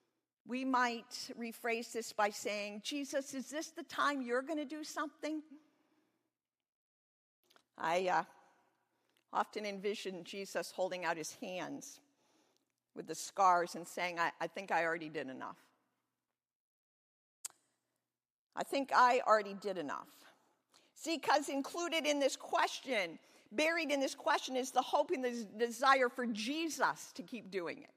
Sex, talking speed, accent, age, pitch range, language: female, 140 wpm, American, 50-69, 230-295 Hz, English